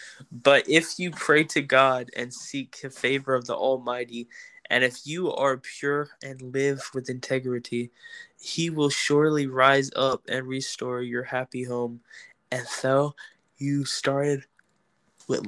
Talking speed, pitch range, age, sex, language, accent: 145 wpm, 130-145 Hz, 10-29, male, English, American